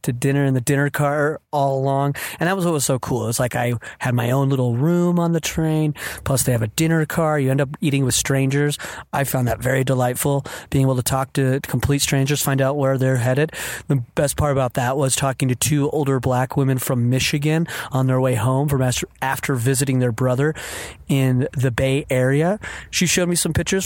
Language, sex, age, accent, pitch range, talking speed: English, male, 30-49, American, 130-150 Hz, 220 wpm